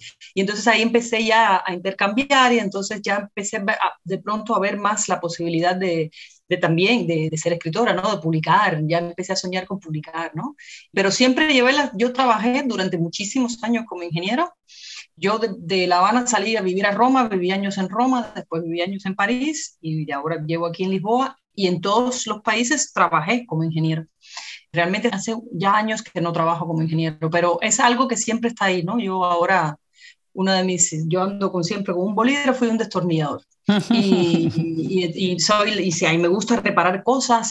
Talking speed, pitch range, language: 200 wpm, 170-225 Hz, Spanish